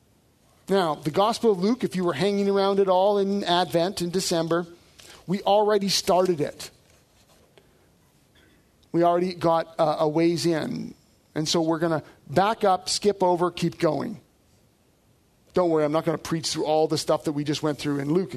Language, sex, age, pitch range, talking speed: English, male, 40-59, 170-235 Hz, 175 wpm